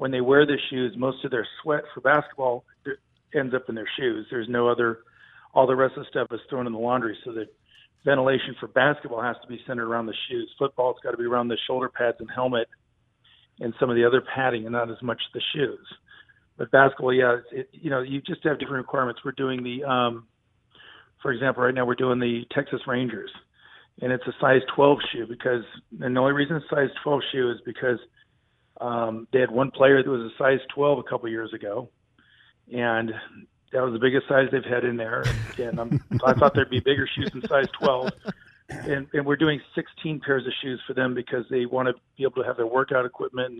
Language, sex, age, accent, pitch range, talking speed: English, male, 40-59, American, 120-140 Hz, 230 wpm